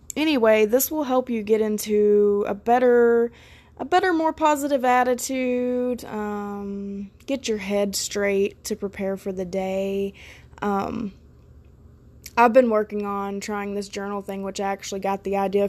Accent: American